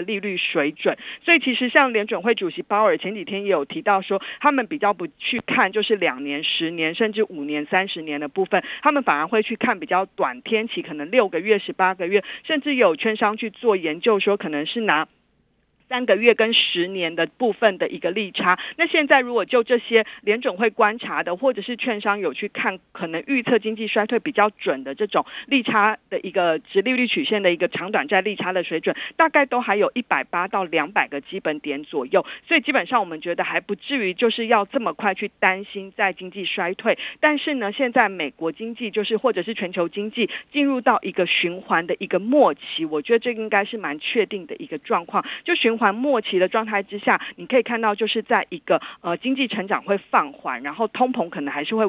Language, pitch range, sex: Chinese, 185-245 Hz, female